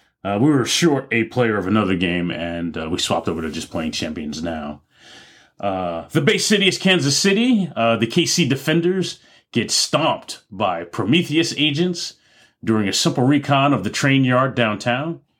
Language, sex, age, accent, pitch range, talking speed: English, male, 30-49, American, 90-130 Hz, 170 wpm